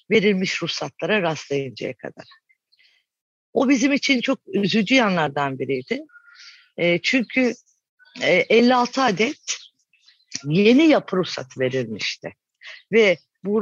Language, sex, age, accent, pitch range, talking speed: Turkish, female, 50-69, native, 165-245 Hz, 95 wpm